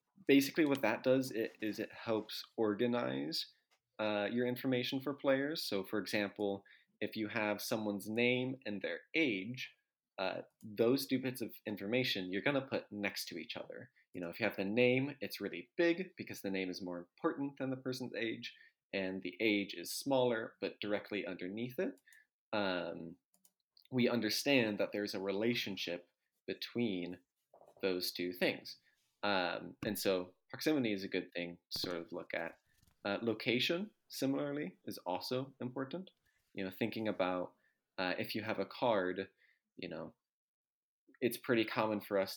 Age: 20-39